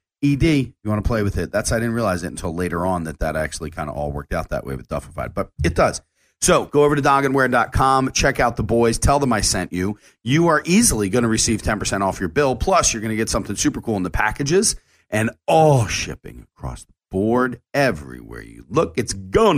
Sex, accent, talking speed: male, American, 235 wpm